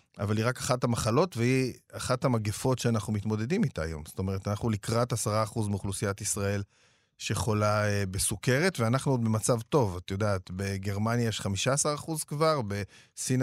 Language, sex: Hebrew, male